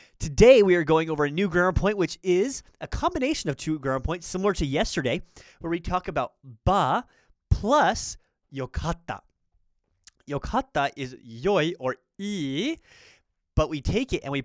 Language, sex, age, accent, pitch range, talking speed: English, male, 30-49, American, 130-175 Hz, 160 wpm